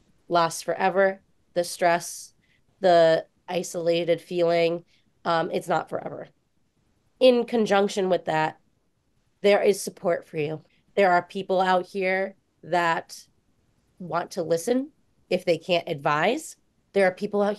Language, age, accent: English, 30-49, American